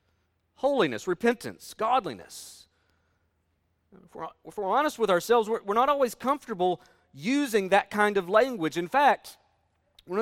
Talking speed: 130 wpm